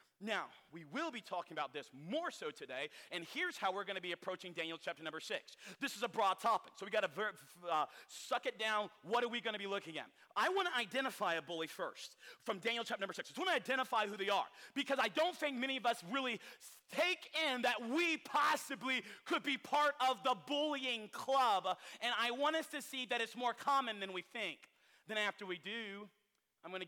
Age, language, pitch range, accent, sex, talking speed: 40-59, English, 190-265 Hz, American, male, 230 wpm